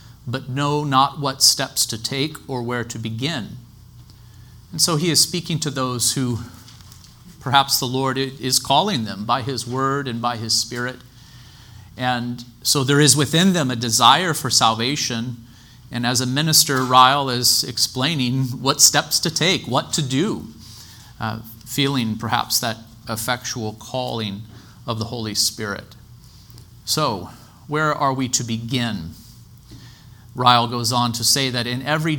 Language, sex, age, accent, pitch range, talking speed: English, male, 40-59, American, 115-135 Hz, 150 wpm